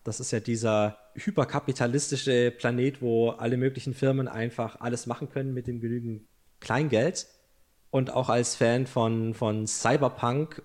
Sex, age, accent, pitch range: male, 20-39, German, 115-135 Hz